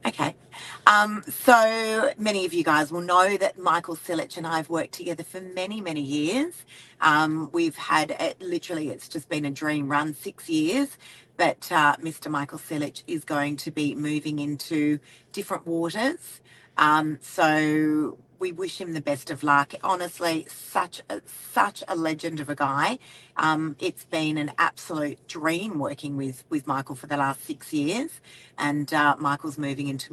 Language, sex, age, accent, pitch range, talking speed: English, female, 40-59, Australian, 145-180 Hz, 170 wpm